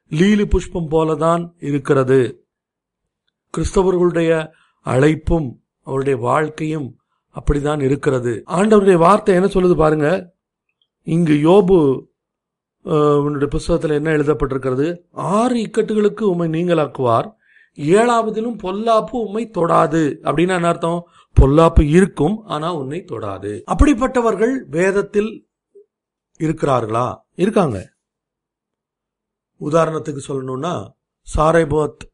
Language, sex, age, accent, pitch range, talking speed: Tamil, male, 50-69, native, 140-195 Hz, 80 wpm